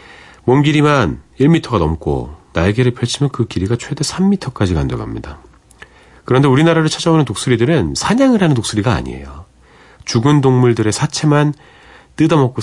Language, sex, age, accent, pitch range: Korean, male, 40-59, native, 90-140 Hz